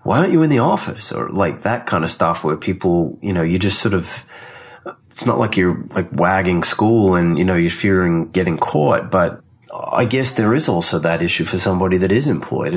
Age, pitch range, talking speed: 30-49, 80-95 Hz, 220 wpm